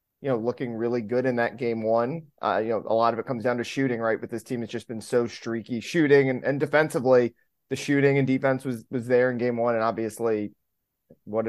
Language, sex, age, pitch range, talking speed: English, male, 20-39, 120-145 Hz, 240 wpm